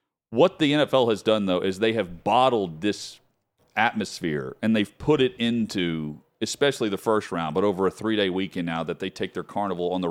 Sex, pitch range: male, 95-120 Hz